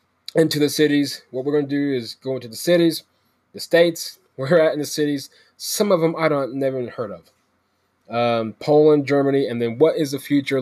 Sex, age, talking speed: male, 20-39, 215 wpm